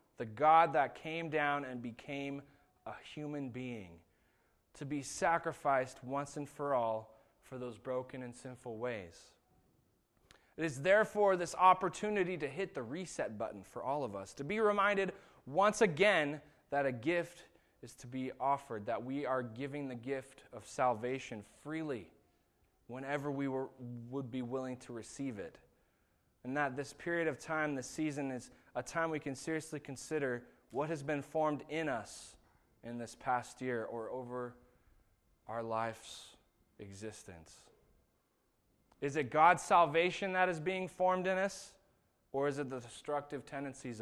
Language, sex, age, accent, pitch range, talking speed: English, male, 20-39, American, 125-165 Hz, 155 wpm